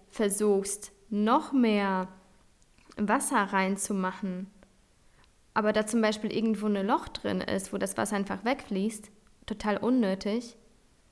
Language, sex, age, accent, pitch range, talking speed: German, female, 20-39, German, 195-230 Hz, 115 wpm